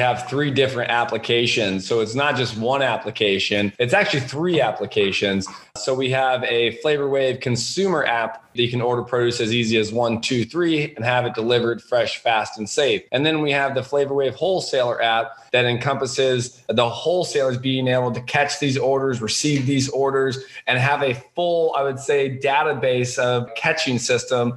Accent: American